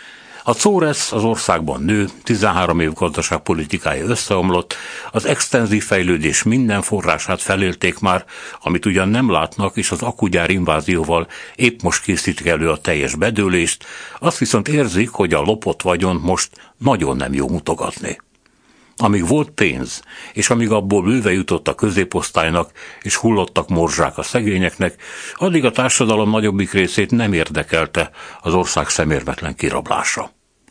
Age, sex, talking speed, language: 60-79, male, 135 wpm, Hungarian